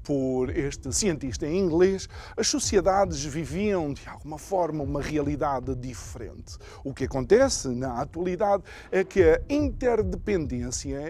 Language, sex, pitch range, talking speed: Portuguese, male, 135-205 Hz, 125 wpm